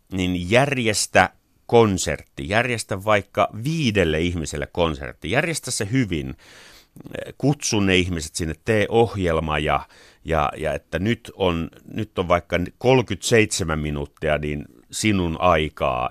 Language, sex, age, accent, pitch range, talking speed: Finnish, male, 30-49, native, 85-120 Hz, 115 wpm